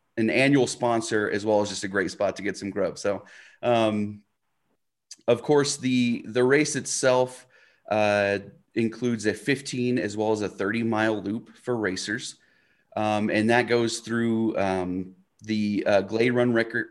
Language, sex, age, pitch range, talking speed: English, male, 30-49, 105-120 Hz, 165 wpm